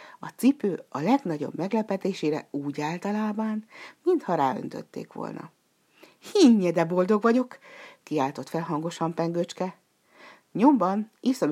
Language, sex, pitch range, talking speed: Hungarian, female, 155-255 Hz, 105 wpm